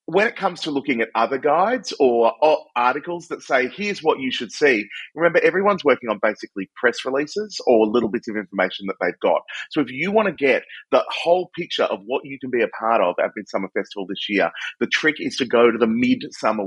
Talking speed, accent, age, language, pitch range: 225 wpm, Australian, 30-49, English, 125-205 Hz